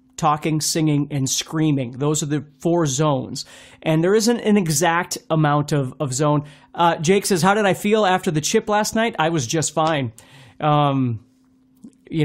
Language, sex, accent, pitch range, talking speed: English, male, American, 145-205 Hz, 175 wpm